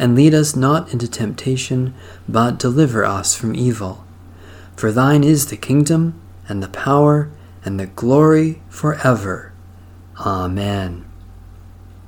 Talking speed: 125 wpm